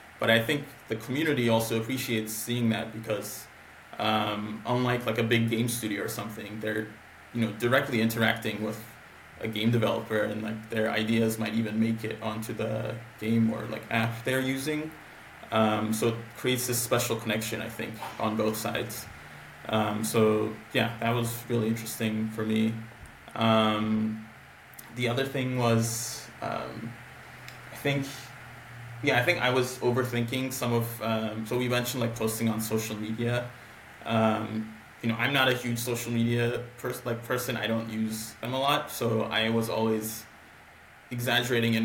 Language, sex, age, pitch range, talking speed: English, male, 20-39, 110-120 Hz, 165 wpm